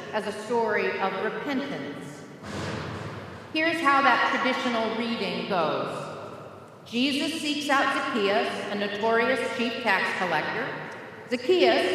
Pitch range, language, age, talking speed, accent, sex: 220-295 Hz, English, 40-59, 105 wpm, American, female